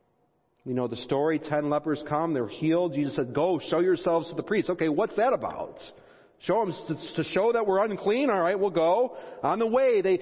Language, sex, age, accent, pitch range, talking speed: English, male, 40-59, American, 140-210 Hz, 210 wpm